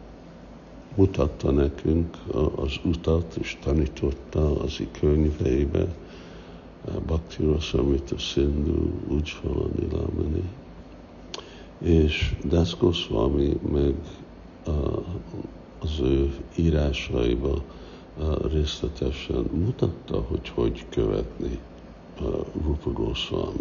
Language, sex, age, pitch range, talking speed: Hungarian, male, 60-79, 75-85 Hz, 65 wpm